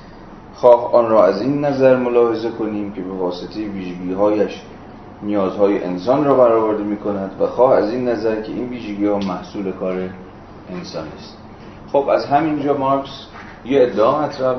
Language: Persian